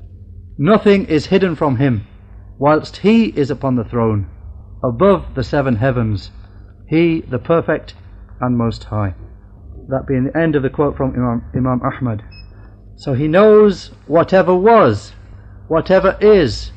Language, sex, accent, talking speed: English, male, British, 140 wpm